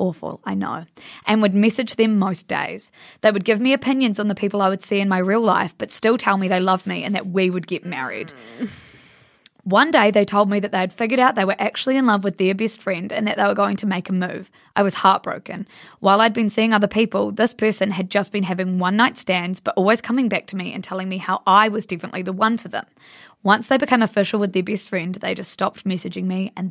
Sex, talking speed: female, 255 wpm